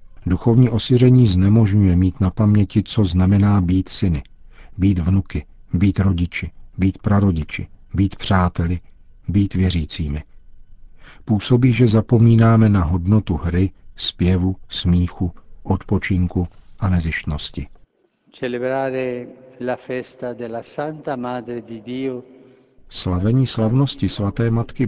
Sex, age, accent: male, 50-69, native